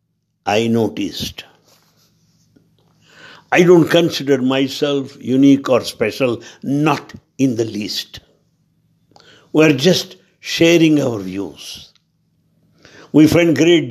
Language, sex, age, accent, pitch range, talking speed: English, male, 60-79, Indian, 110-165 Hz, 95 wpm